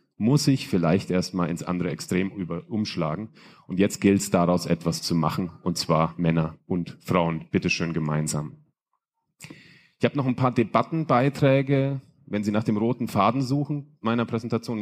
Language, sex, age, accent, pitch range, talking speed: German, male, 30-49, German, 95-125 Hz, 160 wpm